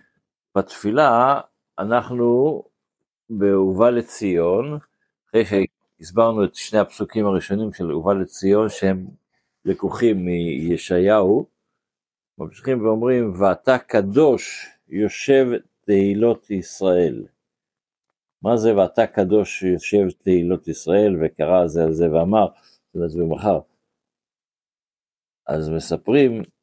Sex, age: male, 50-69